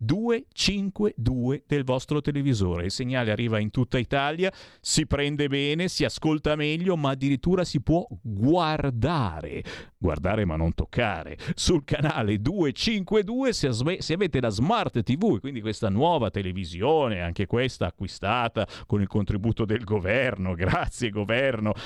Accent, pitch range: native, 110-155 Hz